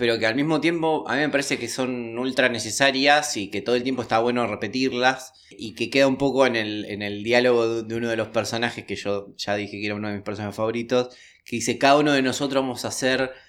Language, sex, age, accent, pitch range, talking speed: Spanish, male, 20-39, Argentinian, 110-135 Hz, 250 wpm